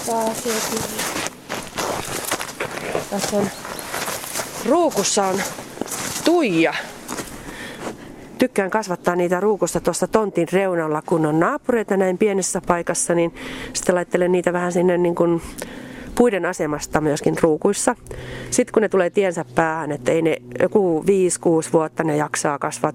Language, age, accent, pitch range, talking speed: Finnish, 30-49, native, 160-210 Hz, 110 wpm